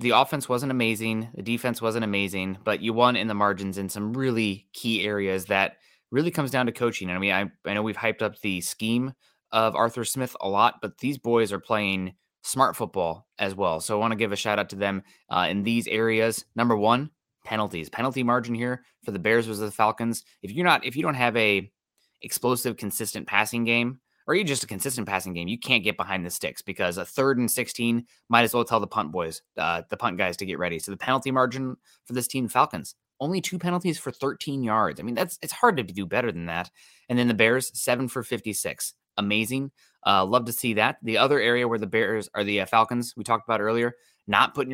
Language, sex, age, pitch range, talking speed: English, male, 20-39, 105-125 Hz, 235 wpm